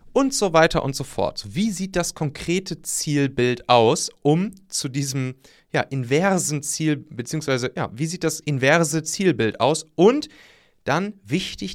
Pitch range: 120-160 Hz